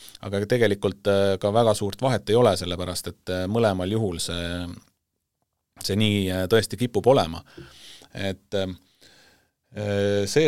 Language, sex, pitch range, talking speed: English, male, 90-105 Hz, 120 wpm